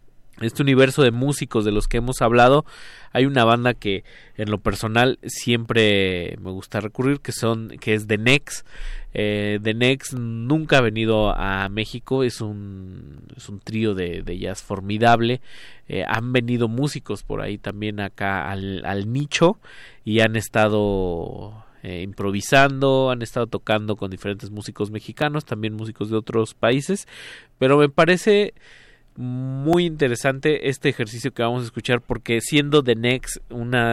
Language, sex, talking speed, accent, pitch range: Spanish, male, 155 wpm, Mexican, 100-125 Hz